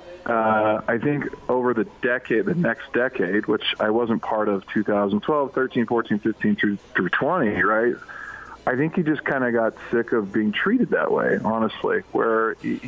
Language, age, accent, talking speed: English, 40-59, American, 175 wpm